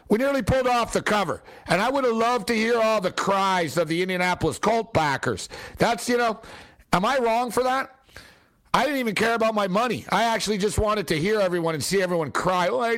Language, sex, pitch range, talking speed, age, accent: English, male, 180-240 Hz, 225 wpm, 60-79, American